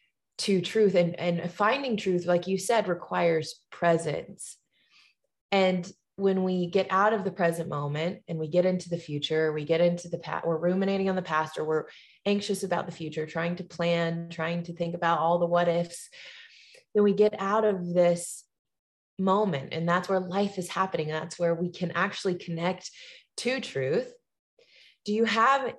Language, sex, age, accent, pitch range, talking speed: English, female, 20-39, American, 165-200 Hz, 175 wpm